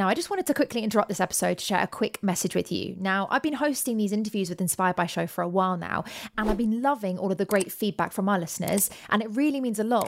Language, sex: English, female